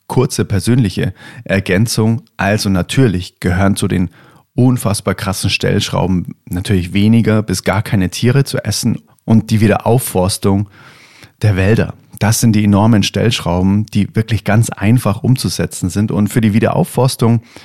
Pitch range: 100-125 Hz